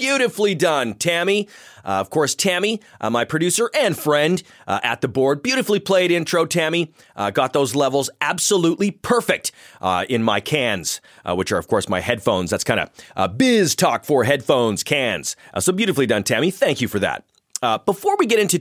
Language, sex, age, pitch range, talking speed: English, male, 30-49, 130-195 Hz, 195 wpm